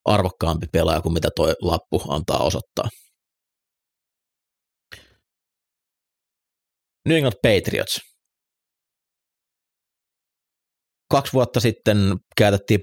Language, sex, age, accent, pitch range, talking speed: Finnish, male, 30-49, native, 85-95 Hz, 70 wpm